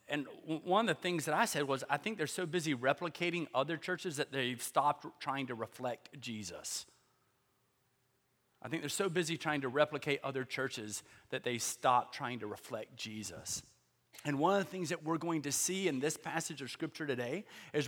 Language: English